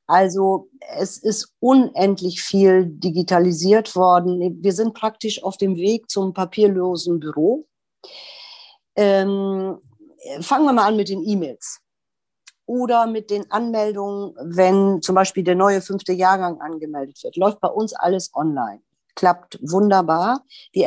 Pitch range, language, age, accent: 175-215 Hz, German, 50-69, German